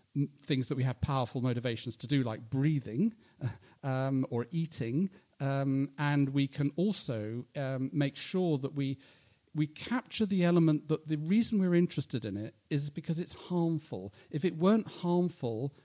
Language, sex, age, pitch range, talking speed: English, male, 50-69, 130-170 Hz, 160 wpm